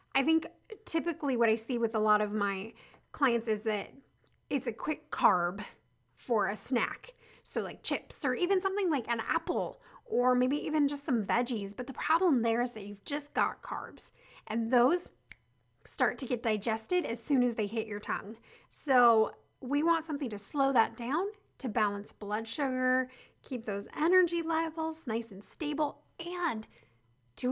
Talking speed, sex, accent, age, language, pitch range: 175 wpm, female, American, 10-29, English, 215-280 Hz